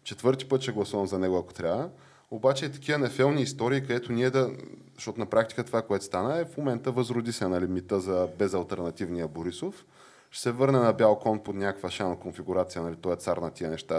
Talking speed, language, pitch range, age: 210 wpm, Bulgarian, 95-125 Hz, 20-39